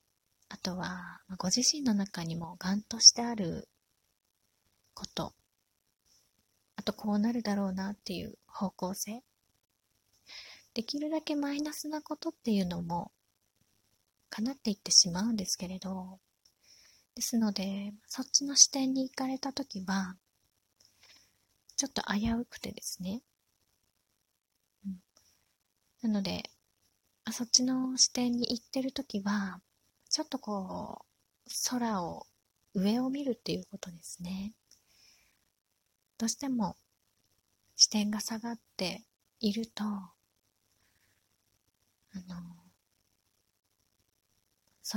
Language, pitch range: Japanese, 165-230 Hz